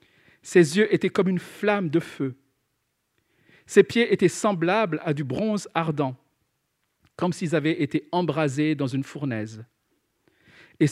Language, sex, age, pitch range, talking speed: French, male, 50-69, 130-175 Hz, 135 wpm